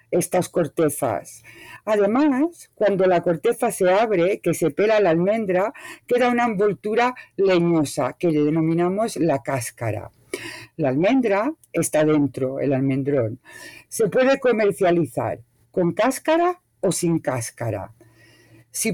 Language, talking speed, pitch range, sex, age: English, 115 wpm, 150-205 Hz, female, 50-69